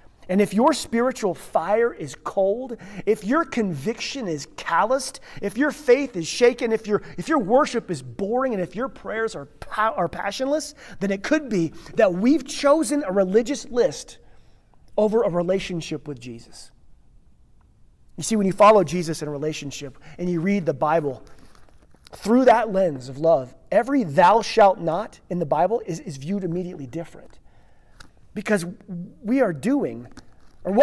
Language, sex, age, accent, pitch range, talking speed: English, male, 30-49, American, 150-225 Hz, 160 wpm